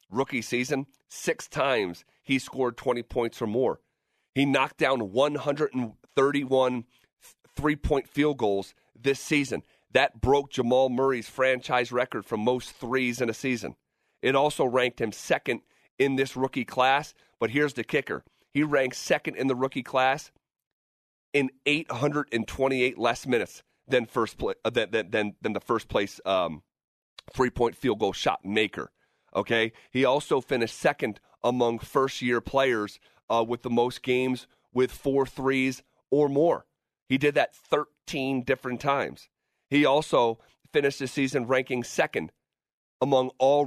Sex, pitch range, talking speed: male, 125-140 Hz, 140 wpm